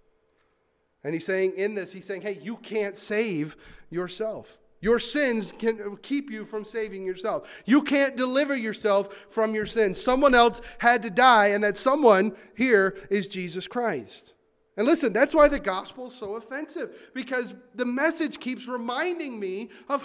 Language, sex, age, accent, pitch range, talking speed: English, male, 30-49, American, 195-275 Hz, 165 wpm